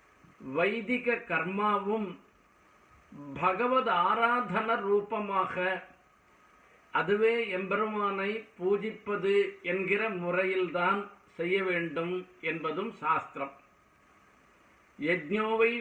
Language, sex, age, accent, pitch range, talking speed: Tamil, male, 50-69, native, 180-220 Hz, 55 wpm